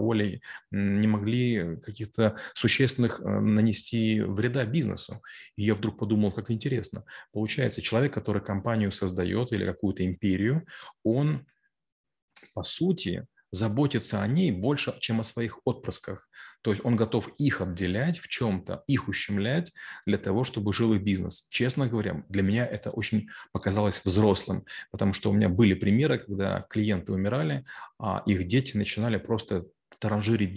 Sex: male